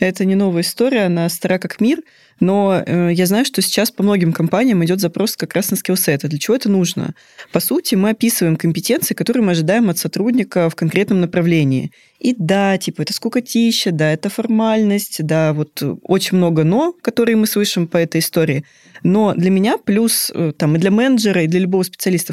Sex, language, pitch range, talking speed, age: female, Russian, 170-220 Hz, 185 wpm, 20-39